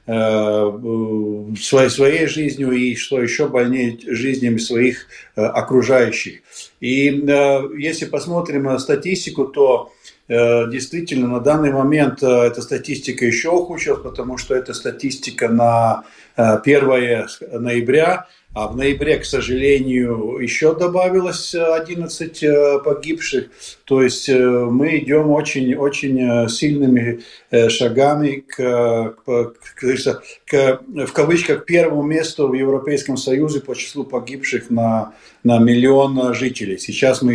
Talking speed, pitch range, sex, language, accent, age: 110 wpm, 120-145 Hz, male, Russian, native, 50-69